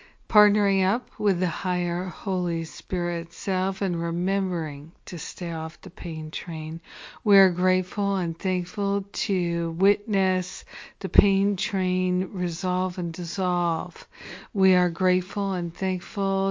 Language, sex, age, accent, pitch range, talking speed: English, female, 50-69, American, 170-190 Hz, 125 wpm